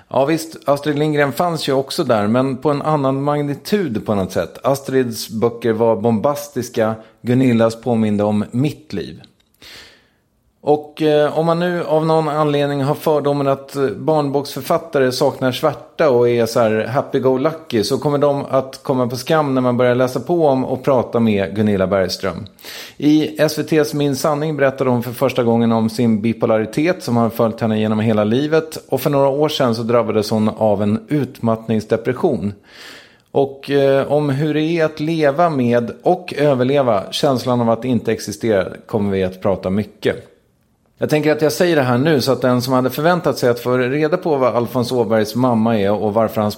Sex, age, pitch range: male, 30-49, 115-145 Hz